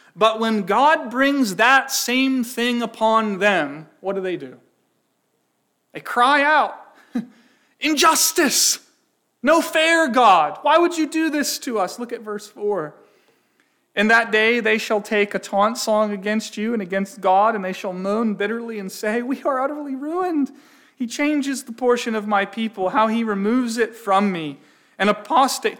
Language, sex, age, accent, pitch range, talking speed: English, male, 30-49, American, 185-255 Hz, 165 wpm